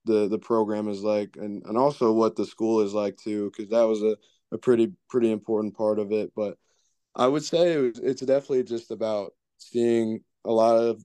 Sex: male